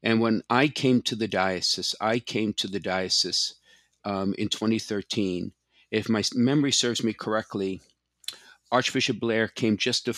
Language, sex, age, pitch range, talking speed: English, male, 50-69, 95-120 Hz, 155 wpm